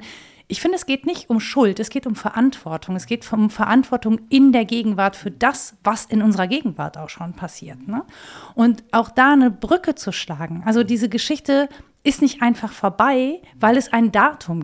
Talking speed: 190 wpm